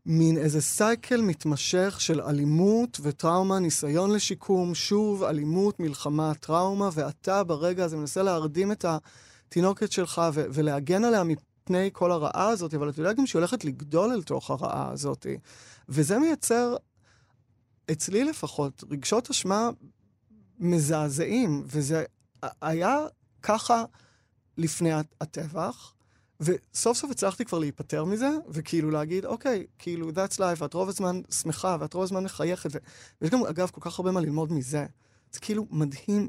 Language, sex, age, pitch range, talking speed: Hebrew, male, 20-39, 145-190 Hz, 140 wpm